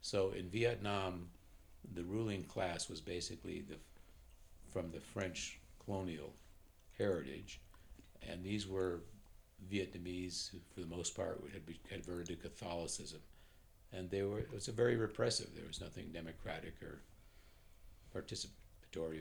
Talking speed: 135 wpm